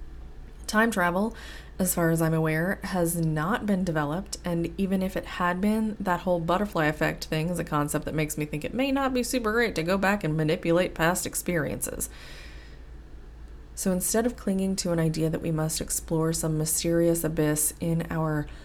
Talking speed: 185 wpm